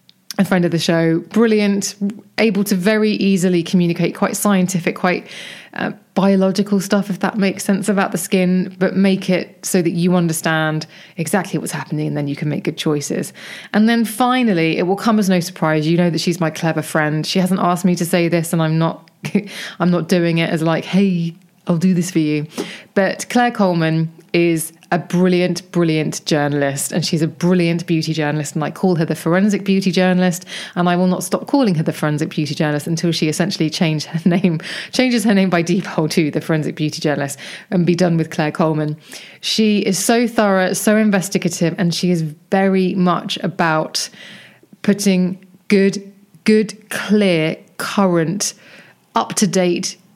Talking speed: 180 wpm